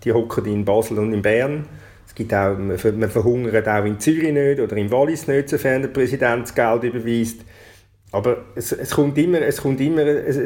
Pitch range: 110-145 Hz